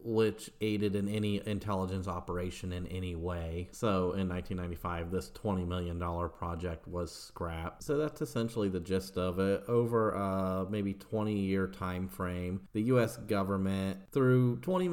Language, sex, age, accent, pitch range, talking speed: English, male, 40-59, American, 90-110 Hz, 145 wpm